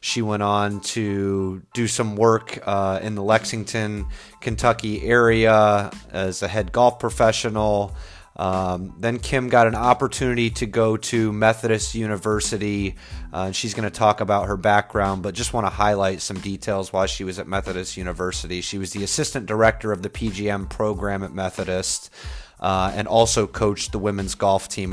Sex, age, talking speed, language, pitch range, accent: male, 30-49, 165 wpm, English, 95-110 Hz, American